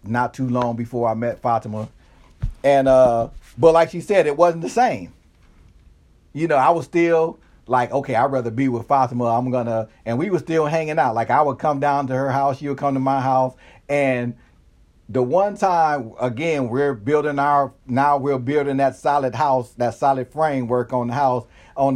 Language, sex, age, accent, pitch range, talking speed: English, male, 40-59, American, 115-140 Hz, 200 wpm